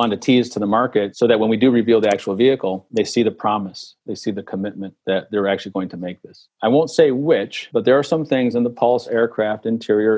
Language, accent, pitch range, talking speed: English, American, 100-120 Hz, 255 wpm